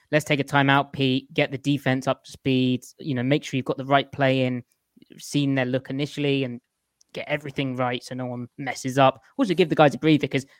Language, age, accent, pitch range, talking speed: English, 20-39, British, 125-150 Hz, 230 wpm